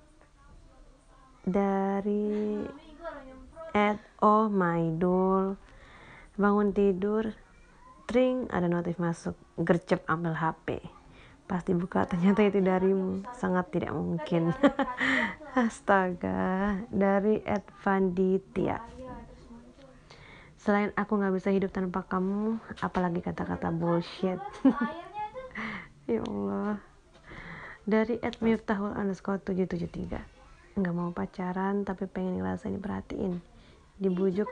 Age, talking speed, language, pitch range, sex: 20-39, 85 wpm, Malay, 180-210 Hz, female